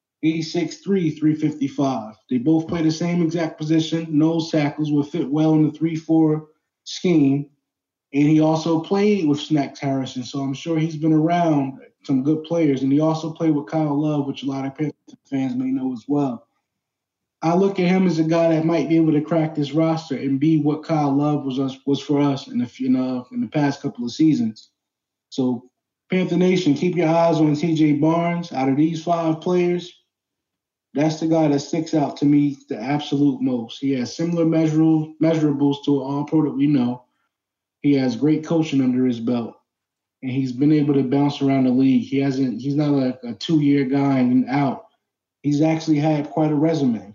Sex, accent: male, American